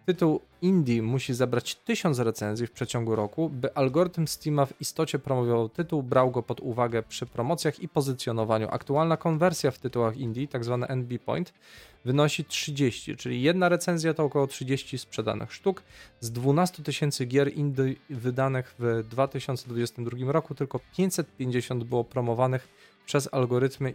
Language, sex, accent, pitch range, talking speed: Polish, male, native, 115-140 Hz, 145 wpm